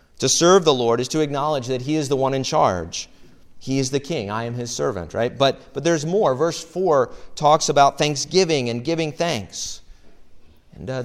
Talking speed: 200 wpm